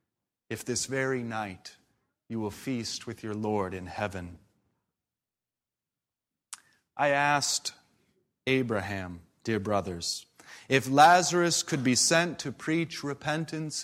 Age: 30-49